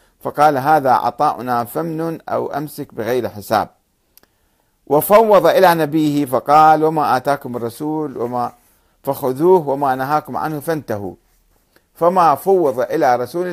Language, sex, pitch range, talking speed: Arabic, male, 125-175 Hz, 110 wpm